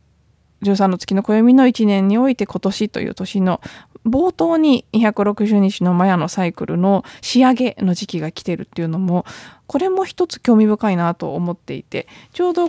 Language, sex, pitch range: Japanese, female, 190-270 Hz